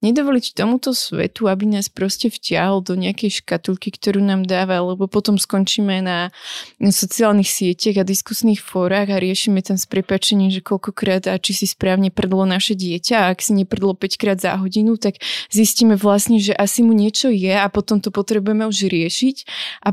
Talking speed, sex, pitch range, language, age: 180 wpm, female, 190-220 Hz, Slovak, 20-39